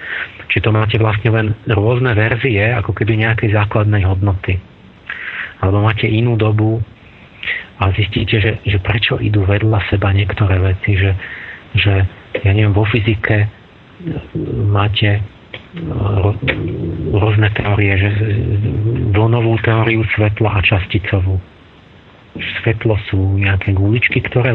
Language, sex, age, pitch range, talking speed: Slovak, male, 40-59, 100-115 Hz, 110 wpm